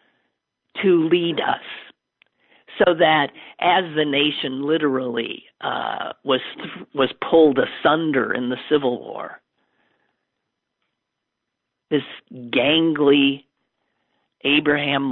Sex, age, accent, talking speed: male, 50-69, American, 85 wpm